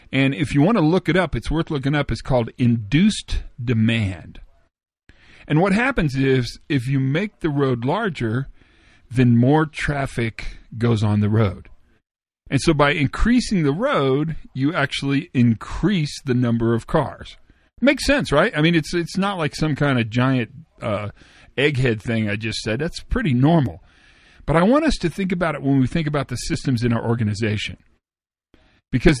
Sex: male